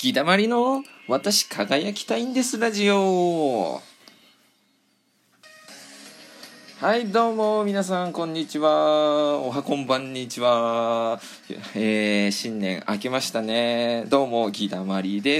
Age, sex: 20-39, male